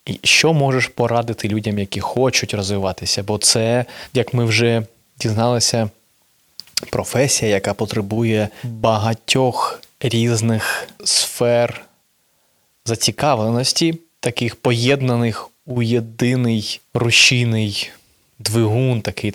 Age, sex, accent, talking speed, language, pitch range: 20-39, male, native, 85 wpm, Ukrainian, 110-125 Hz